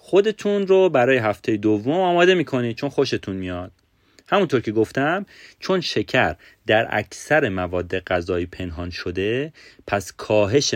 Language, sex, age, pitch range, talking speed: Persian, male, 30-49, 100-155 Hz, 130 wpm